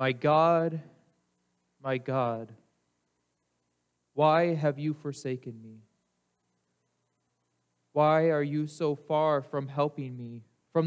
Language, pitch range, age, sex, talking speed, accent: English, 110-180 Hz, 20-39, male, 100 wpm, American